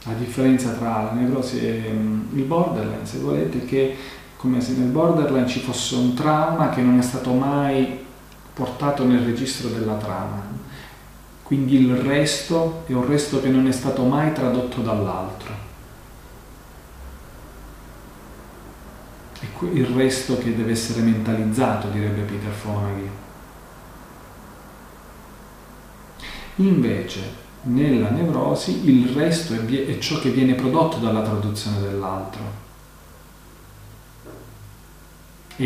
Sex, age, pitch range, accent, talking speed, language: male, 40-59, 105-130 Hz, native, 115 wpm, Italian